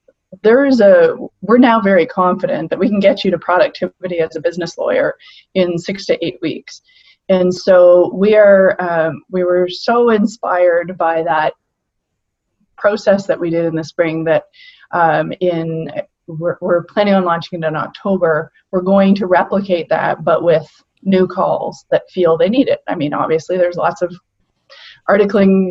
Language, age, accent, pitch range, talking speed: English, 20-39, American, 175-225 Hz, 170 wpm